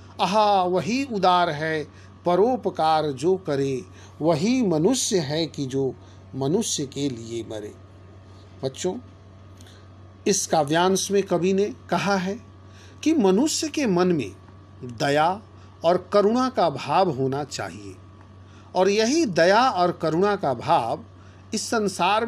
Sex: male